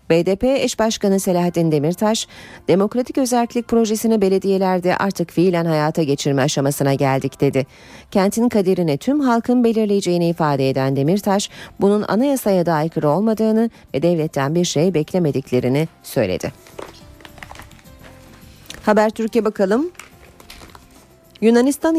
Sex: female